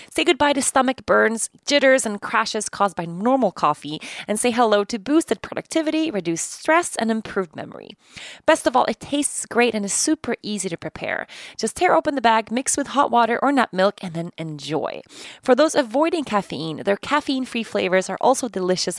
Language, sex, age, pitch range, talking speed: English, female, 20-39, 185-270 Hz, 190 wpm